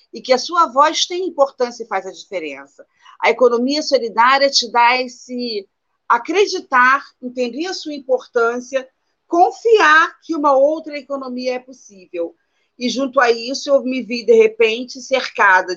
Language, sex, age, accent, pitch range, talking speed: Portuguese, female, 40-59, Brazilian, 180-255 Hz, 150 wpm